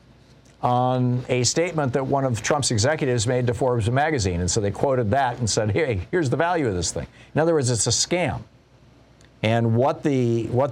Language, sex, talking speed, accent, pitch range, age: English, male, 200 wpm, American, 105-130 Hz, 50-69